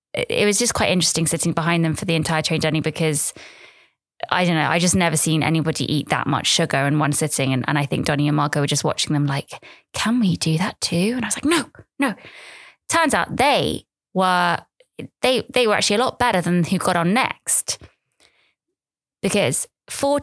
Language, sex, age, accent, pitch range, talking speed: English, female, 20-39, British, 155-190 Hz, 210 wpm